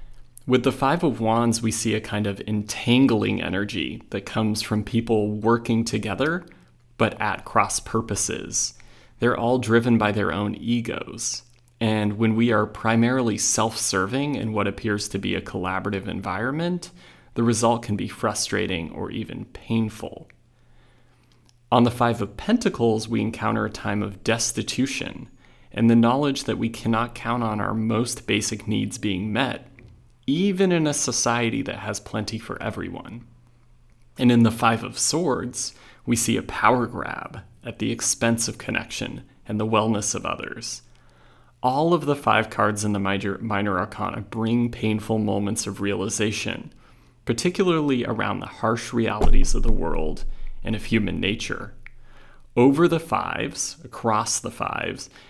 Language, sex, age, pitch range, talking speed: English, male, 30-49, 105-120 Hz, 150 wpm